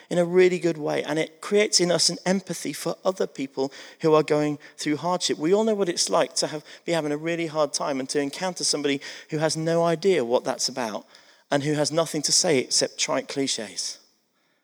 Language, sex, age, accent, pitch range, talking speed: English, male, 40-59, British, 155-215 Hz, 215 wpm